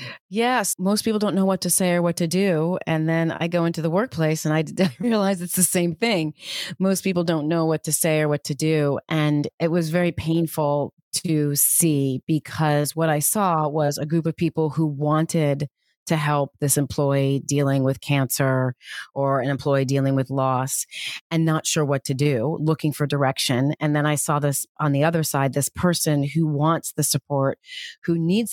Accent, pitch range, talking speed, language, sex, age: American, 140-170 Hz, 200 wpm, English, female, 30-49